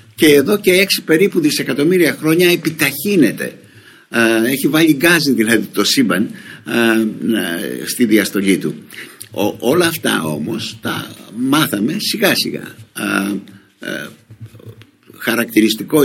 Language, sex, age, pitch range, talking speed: Greek, male, 60-79, 105-160 Hz, 95 wpm